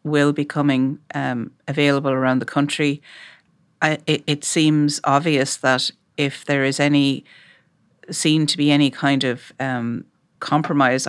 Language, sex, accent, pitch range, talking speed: English, female, Irish, 125-145 Hz, 135 wpm